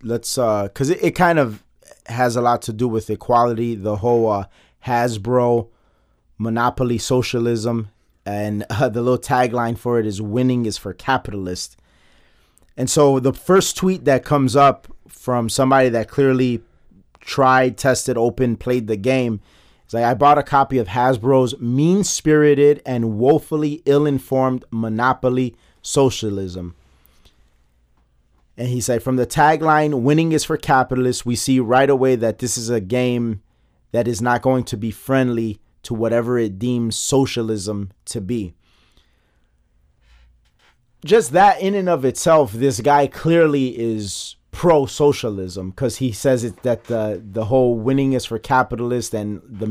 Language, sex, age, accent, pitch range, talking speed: English, male, 30-49, American, 105-130 Hz, 150 wpm